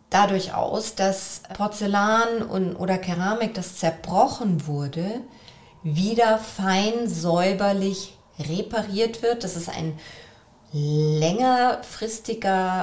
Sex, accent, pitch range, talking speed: female, German, 170-220 Hz, 85 wpm